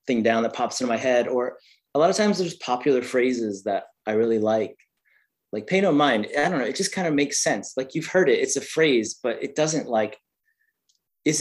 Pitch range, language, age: 115-155 Hz, English, 30-49